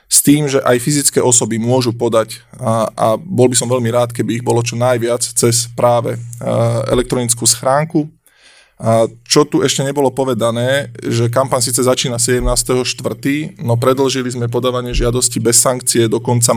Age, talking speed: 20-39, 160 wpm